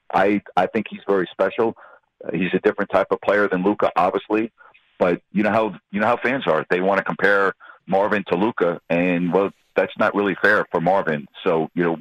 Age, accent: 50-69, American